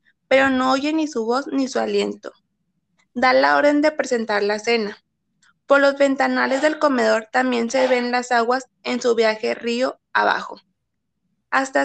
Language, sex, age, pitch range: Spanish, female, 20-39, 220-270 Hz